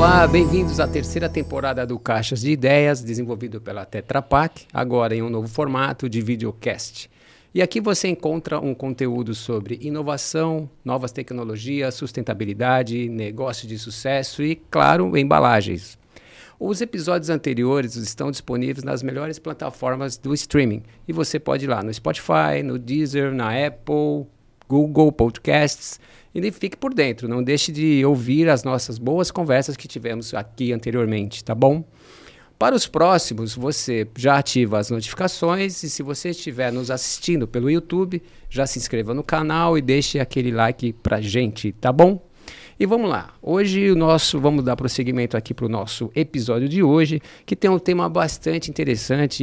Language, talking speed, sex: Portuguese, 155 wpm, male